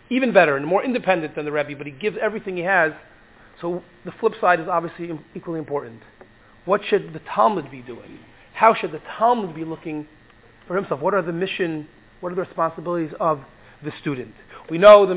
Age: 30-49